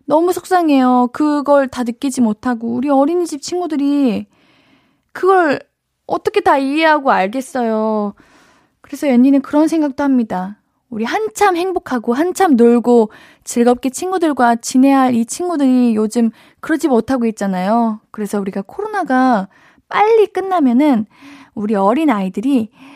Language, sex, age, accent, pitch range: Korean, female, 20-39, native, 215-300 Hz